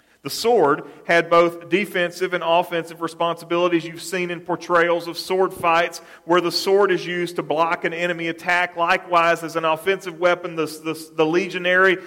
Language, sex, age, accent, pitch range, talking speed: English, male, 40-59, American, 165-185 Hz, 170 wpm